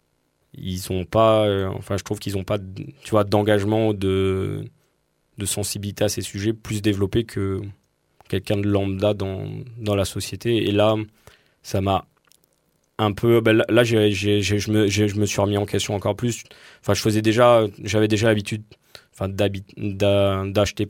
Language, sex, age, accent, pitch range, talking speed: French, male, 20-39, French, 95-105 Hz, 165 wpm